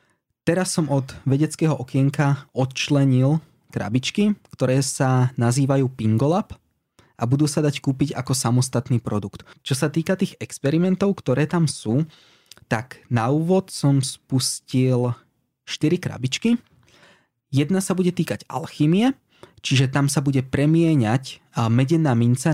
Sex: male